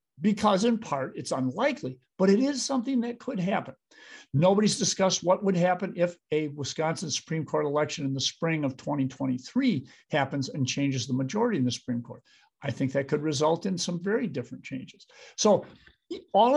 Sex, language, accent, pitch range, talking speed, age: male, English, American, 135-185 Hz, 175 wpm, 50-69